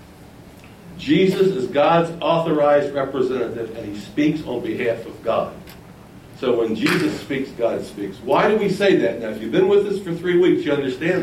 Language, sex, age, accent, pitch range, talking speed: English, male, 60-79, American, 140-200 Hz, 180 wpm